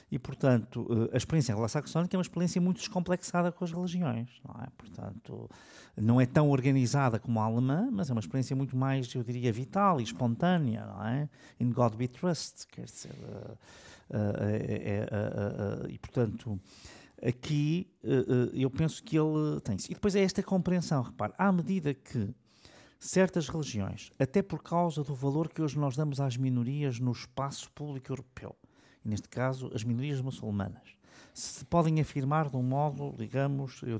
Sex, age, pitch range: male, 50-69, 115-155 Hz